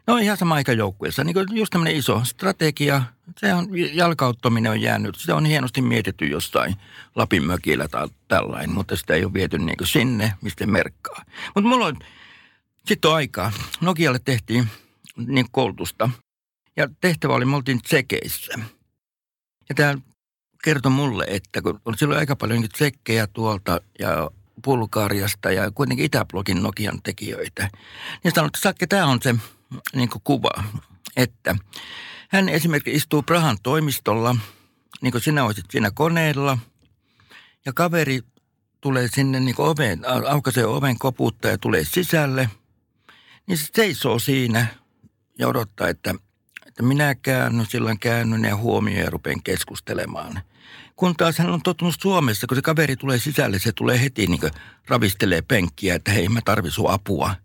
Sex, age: male, 60-79